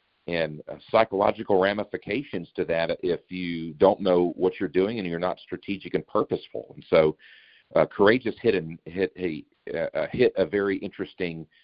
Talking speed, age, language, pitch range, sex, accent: 170 wpm, 50-69, English, 85-100 Hz, male, American